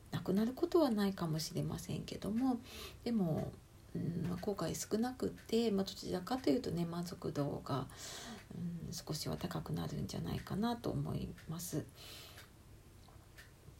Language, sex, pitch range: Japanese, female, 130-200 Hz